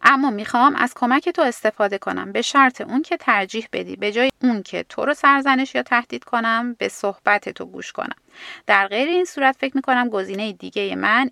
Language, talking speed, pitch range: Persian, 190 wpm, 200-270 Hz